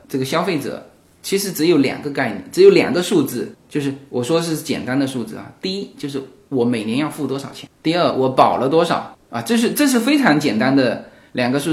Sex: male